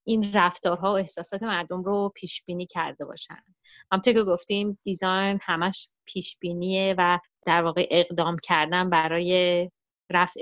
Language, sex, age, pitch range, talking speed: Persian, female, 30-49, 175-210 Hz, 140 wpm